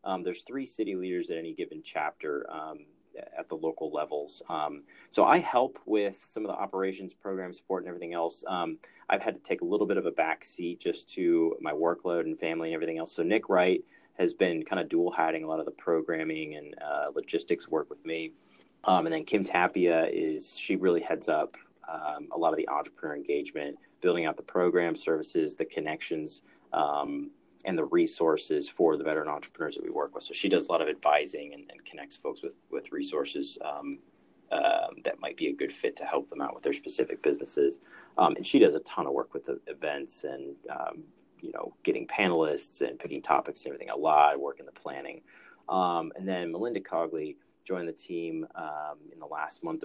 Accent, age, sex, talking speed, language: American, 30-49, male, 215 wpm, English